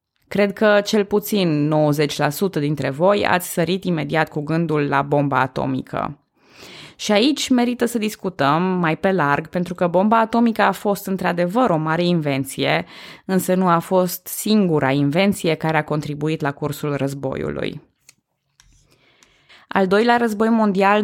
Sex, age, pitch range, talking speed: female, 20-39, 155-195 Hz, 140 wpm